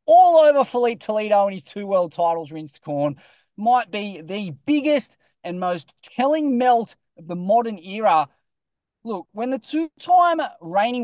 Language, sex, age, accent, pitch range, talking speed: English, male, 20-39, Australian, 165-230 Hz, 150 wpm